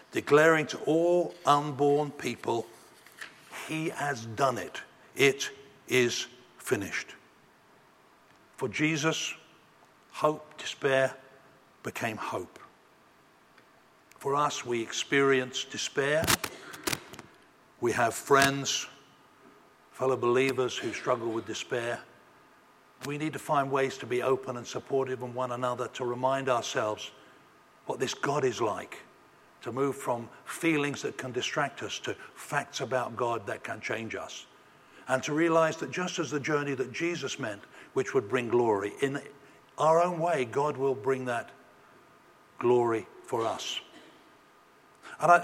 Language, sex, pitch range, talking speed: English, male, 125-155 Hz, 125 wpm